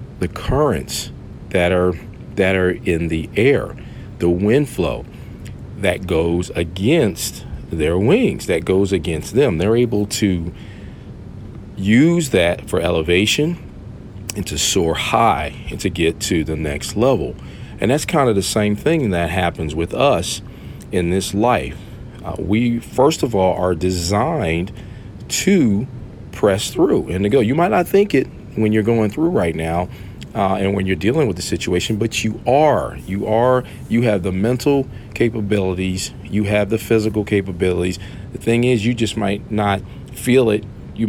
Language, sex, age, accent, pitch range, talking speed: English, male, 50-69, American, 90-115 Hz, 160 wpm